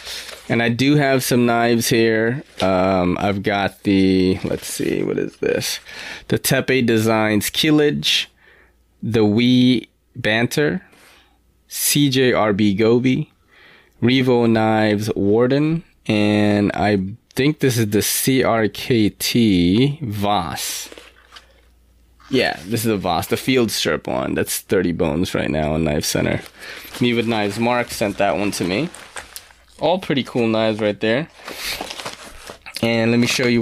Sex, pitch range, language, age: male, 100-120 Hz, English, 20-39